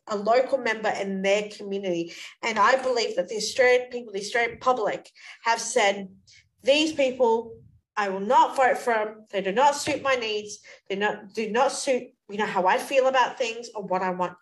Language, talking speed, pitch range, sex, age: English, 195 wpm, 200-265 Hz, female, 30-49